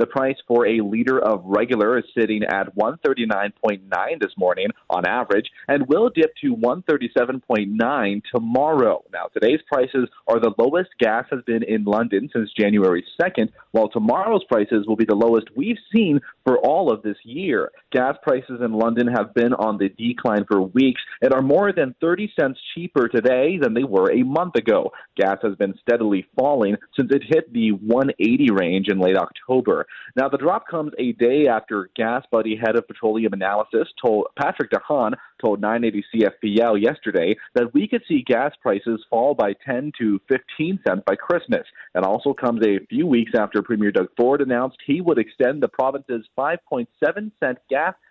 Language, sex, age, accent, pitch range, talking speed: English, male, 30-49, American, 105-135 Hz, 175 wpm